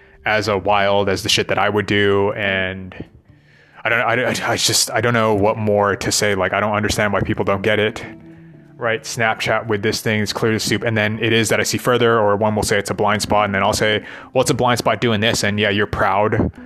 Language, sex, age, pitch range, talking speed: English, male, 20-39, 100-115 Hz, 265 wpm